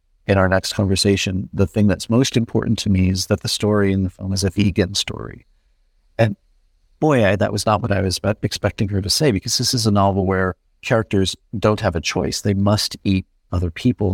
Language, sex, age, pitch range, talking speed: English, male, 50-69, 95-110 Hz, 215 wpm